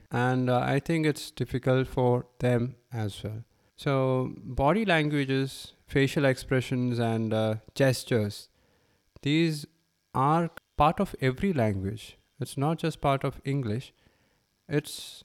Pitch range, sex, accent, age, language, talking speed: 110-135 Hz, male, Indian, 20-39, English, 120 wpm